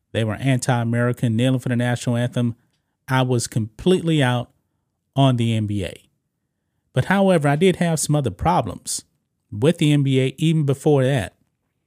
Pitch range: 120-150 Hz